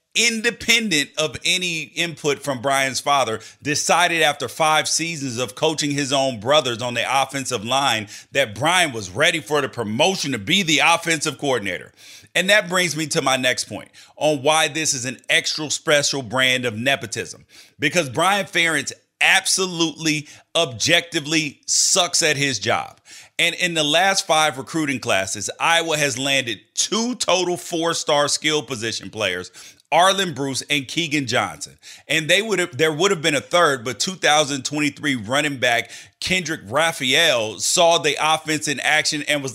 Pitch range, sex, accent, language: 135-170 Hz, male, American, English